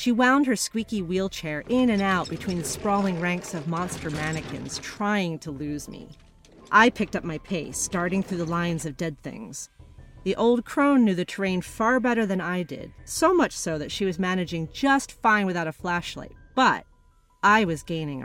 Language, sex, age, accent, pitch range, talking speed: English, female, 40-59, American, 155-210 Hz, 190 wpm